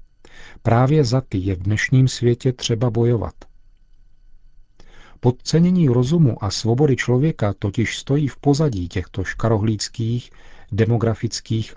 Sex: male